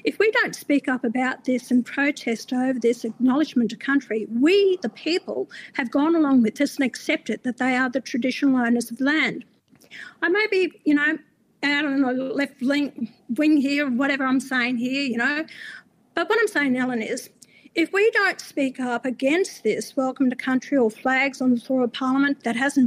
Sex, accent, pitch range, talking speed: female, Australian, 250-305 Hz, 195 wpm